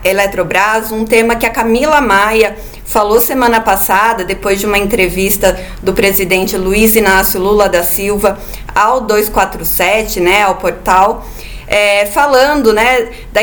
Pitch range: 200-250 Hz